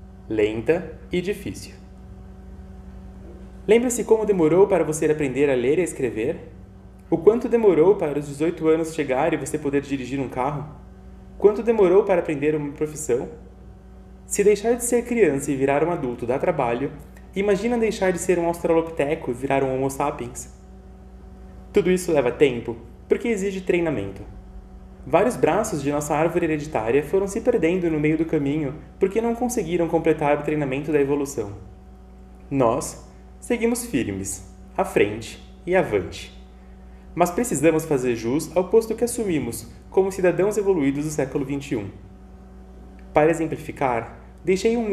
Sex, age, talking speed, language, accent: male, 20-39, 145 wpm, Portuguese, Brazilian